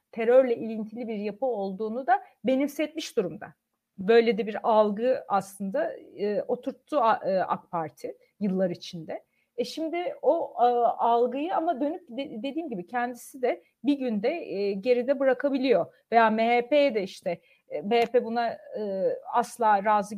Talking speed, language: 135 wpm, Turkish